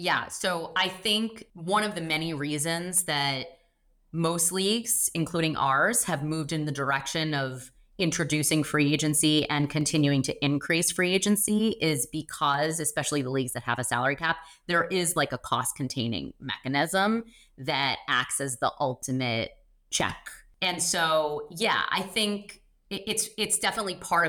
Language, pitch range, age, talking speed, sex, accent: English, 135-175 Hz, 20-39, 150 wpm, female, American